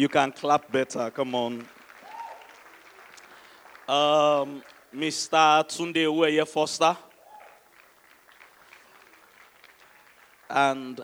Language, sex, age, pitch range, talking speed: English, male, 20-39, 120-150 Hz, 60 wpm